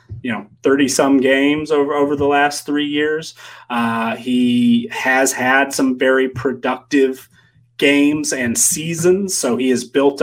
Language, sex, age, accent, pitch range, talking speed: English, male, 30-49, American, 125-145 Hz, 145 wpm